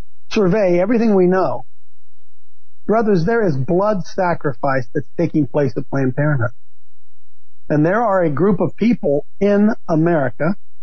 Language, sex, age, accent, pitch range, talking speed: English, male, 50-69, American, 155-225 Hz, 135 wpm